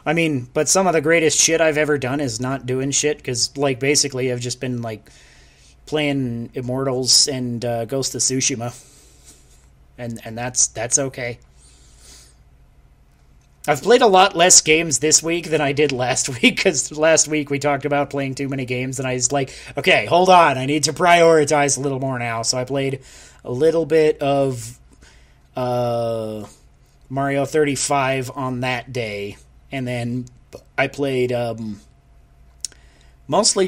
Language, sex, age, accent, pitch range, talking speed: English, male, 30-49, American, 120-155 Hz, 160 wpm